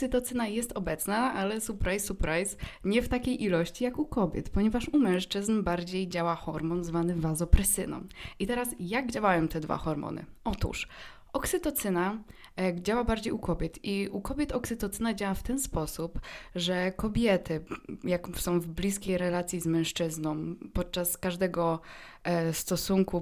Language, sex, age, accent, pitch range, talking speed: Polish, female, 20-39, native, 170-225 Hz, 140 wpm